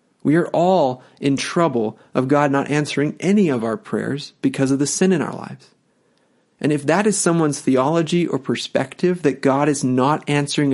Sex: male